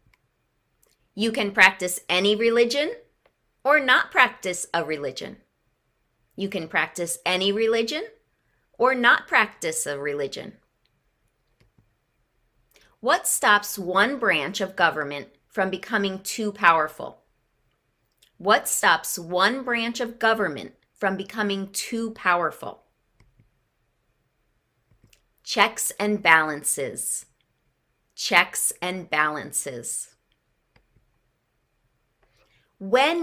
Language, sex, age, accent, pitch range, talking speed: English, female, 30-49, American, 160-220 Hz, 85 wpm